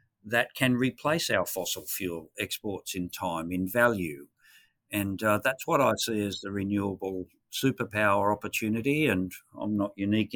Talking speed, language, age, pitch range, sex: 150 wpm, English, 50-69, 95-110 Hz, male